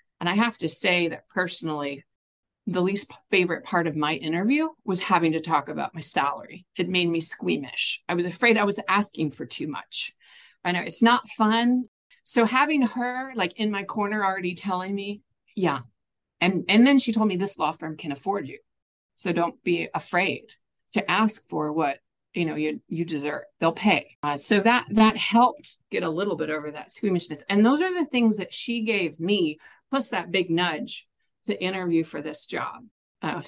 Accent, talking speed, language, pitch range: American, 195 wpm, English, 165-215 Hz